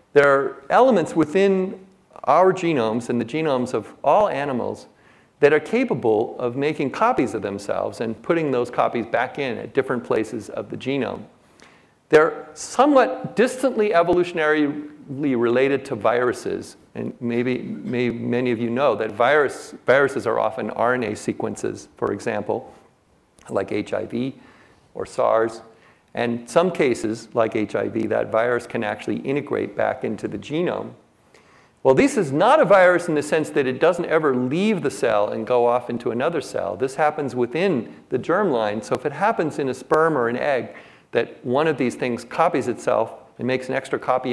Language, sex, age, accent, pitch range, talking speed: English, male, 50-69, American, 120-165 Hz, 165 wpm